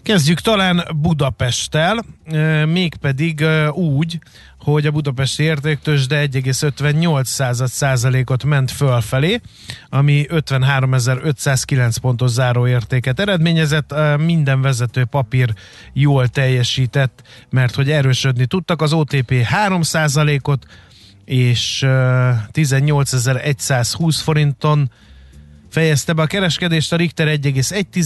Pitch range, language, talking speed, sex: 130-155 Hz, Hungarian, 80 wpm, male